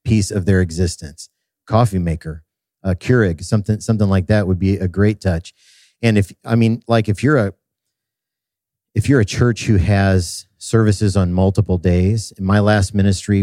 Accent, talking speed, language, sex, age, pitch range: American, 180 wpm, English, male, 50-69, 95-105 Hz